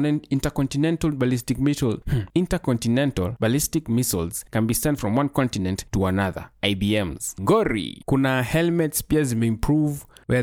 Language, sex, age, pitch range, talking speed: English, male, 20-39, 110-140 Hz, 125 wpm